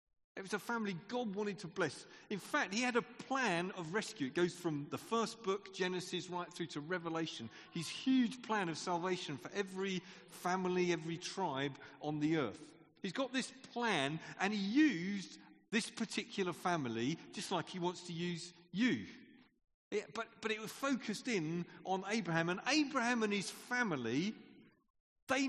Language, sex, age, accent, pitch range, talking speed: English, male, 40-59, British, 175-245 Hz, 165 wpm